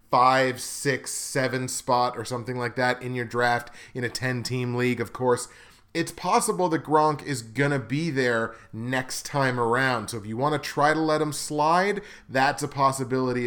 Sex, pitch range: male, 120-150 Hz